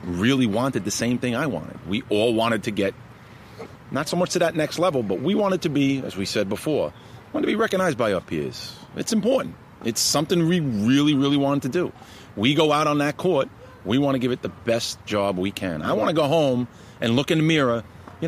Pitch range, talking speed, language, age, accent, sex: 110-160 Hz, 240 wpm, English, 40-59, American, male